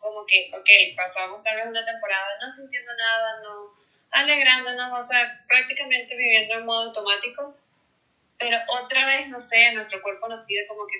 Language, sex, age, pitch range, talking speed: Spanish, female, 20-39, 205-255 Hz, 170 wpm